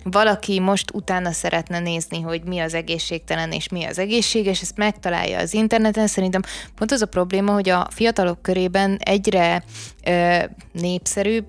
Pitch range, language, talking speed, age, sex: 180-210 Hz, Hungarian, 155 wpm, 20-39, female